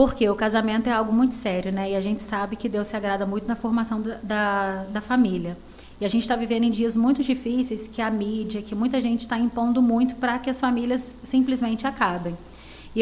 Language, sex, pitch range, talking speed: Portuguese, female, 210-250 Hz, 220 wpm